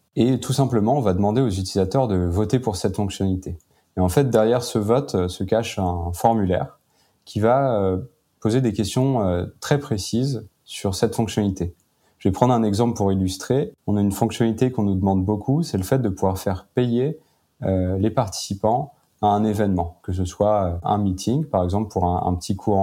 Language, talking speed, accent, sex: French, 185 wpm, French, male